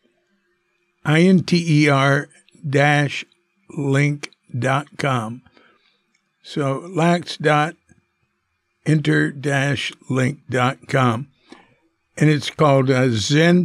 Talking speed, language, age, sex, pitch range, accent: 70 wpm, English, 60-79, male, 125-155 Hz, American